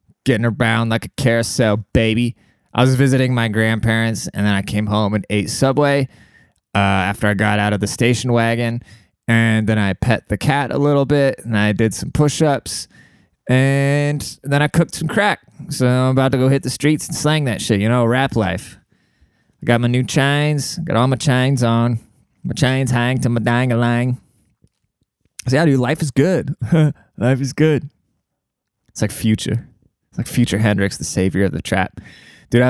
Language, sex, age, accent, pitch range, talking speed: English, male, 20-39, American, 105-130 Hz, 185 wpm